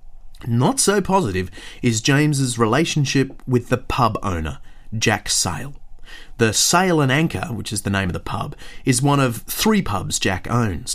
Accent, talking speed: Australian, 165 wpm